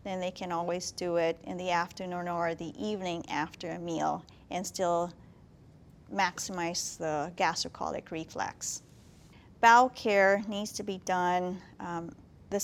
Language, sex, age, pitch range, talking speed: English, female, 40-59, 175-205 Hz, 140 wpm